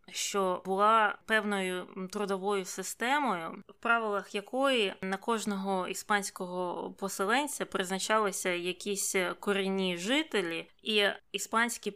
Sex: female